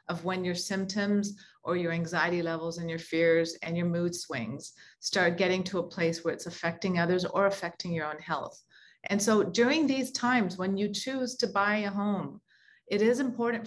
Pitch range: 175-205 Hz